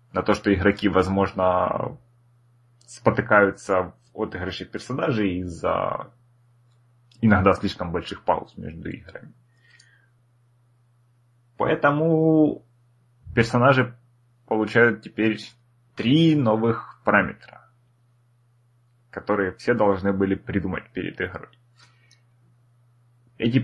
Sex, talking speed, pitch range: male, 80 wpm, 105-120 Hz